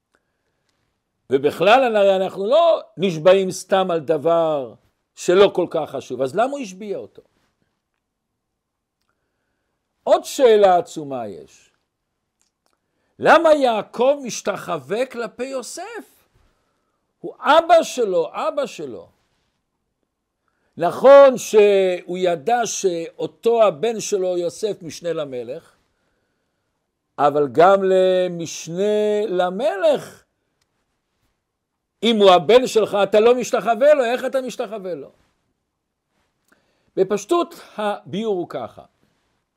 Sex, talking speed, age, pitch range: male, 90 wpm, 60-79, 185-255 Hz